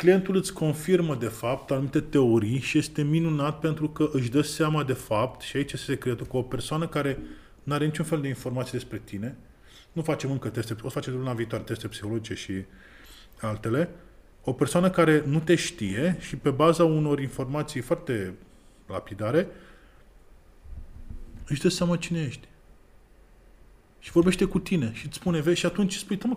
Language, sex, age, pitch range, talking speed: Romanian, male, 20-39, 130-190 Hz, 180 wpm